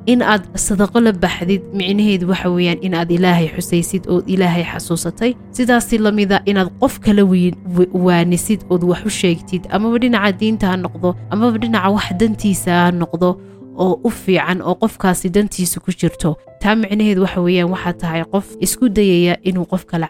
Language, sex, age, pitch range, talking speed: English, female, 20-39, 175-200 Hz, 135 wpm